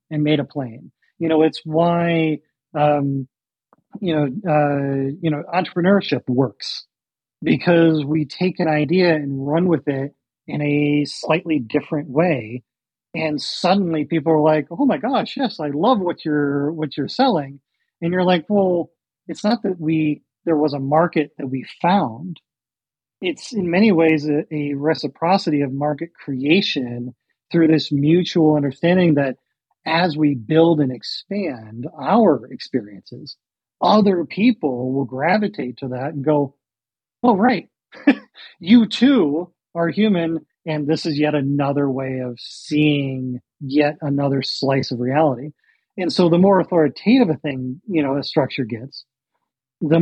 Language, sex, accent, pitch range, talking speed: English, male, American, 140-170 Hz, 145 wpm